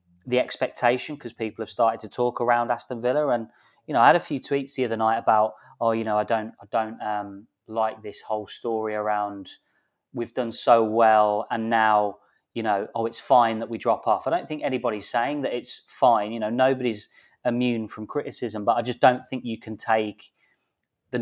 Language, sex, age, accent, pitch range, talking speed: English, male, 20-39, British, 110-125 Hz, 210 wpm